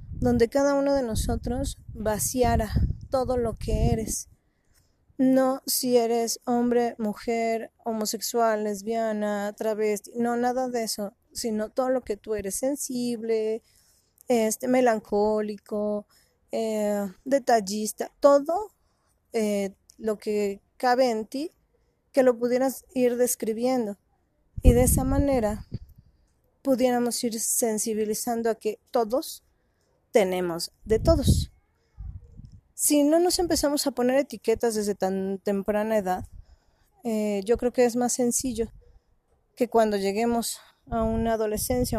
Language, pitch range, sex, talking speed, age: Spanish, 215-255 Hz, female, 115 wpm, 20-39